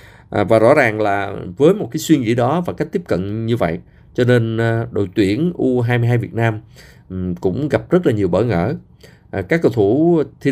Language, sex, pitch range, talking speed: Vietnamese, male, 100-130 Hz, 195 wpm